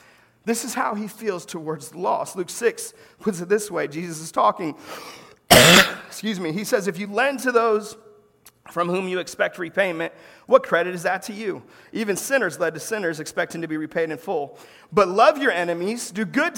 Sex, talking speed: male, 190 wpm